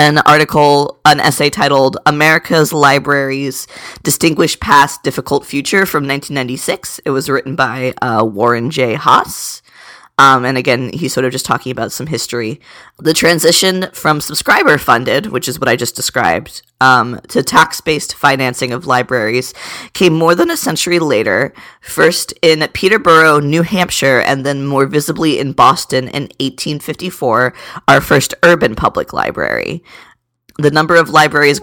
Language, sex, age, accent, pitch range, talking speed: English, female, 20-39, American, 135-160 Hz, 145 wpm